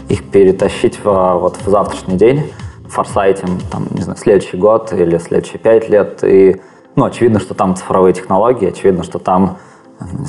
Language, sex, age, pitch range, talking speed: Russian, male, 20-39, 95-110 Hz, 175 wpm